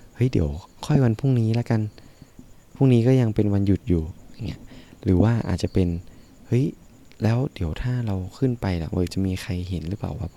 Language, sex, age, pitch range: Thai, male, 20-39, 90-115 Hz